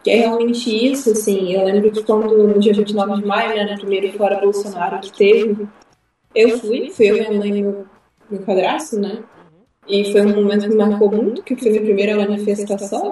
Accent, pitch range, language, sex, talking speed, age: Brazilian, 200-220 Hz, Portuguese, female, 200 wpm, 20-39